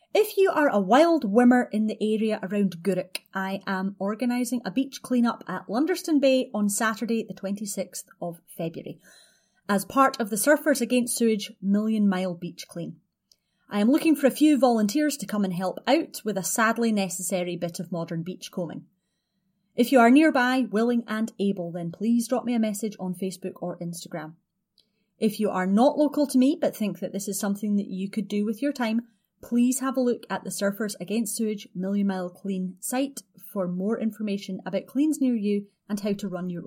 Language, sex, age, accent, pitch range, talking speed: English, female, 30-49, British, 190-245 Hz, 195 wpm